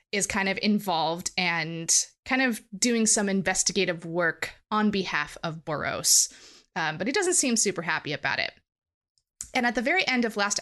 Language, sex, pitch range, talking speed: English, female, 175-230 Hz, 175 wpm